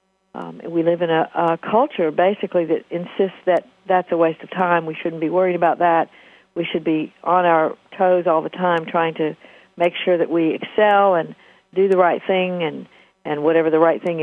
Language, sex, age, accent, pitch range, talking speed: English, female, 50-69, American, 160-195 Hz, 205 wpm